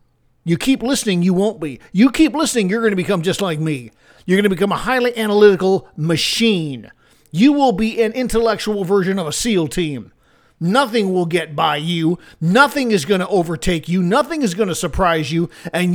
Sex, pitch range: male, 165-220 Hz